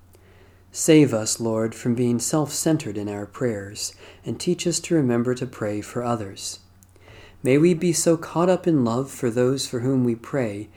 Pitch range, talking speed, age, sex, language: 100-145 Hz, 180 wpm, 40-59, male, English